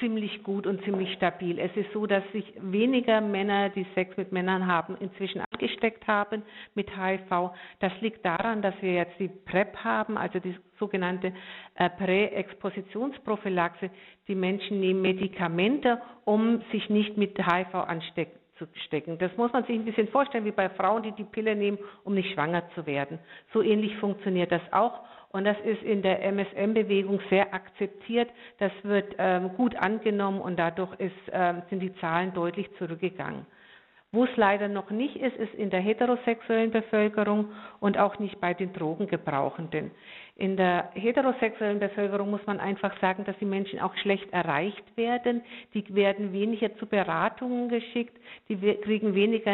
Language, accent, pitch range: German, German, 190-220 Hz